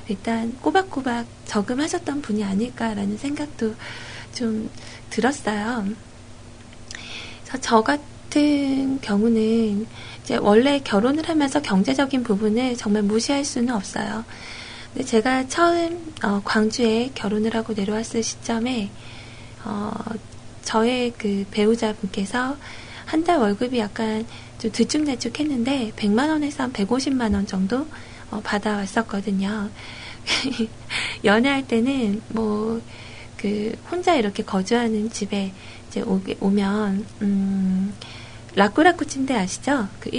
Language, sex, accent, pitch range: Korean, female, native, 200-245 Hz